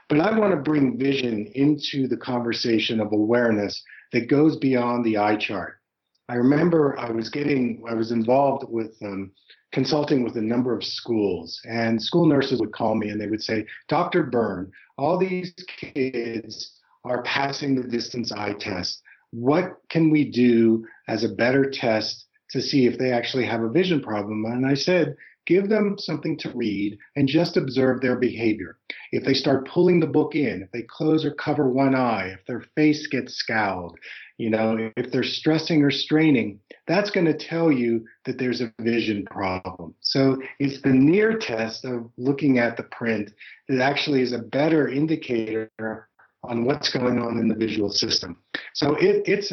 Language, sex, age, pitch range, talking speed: English, male, 40-59, 115-150 Hz, 175 wpm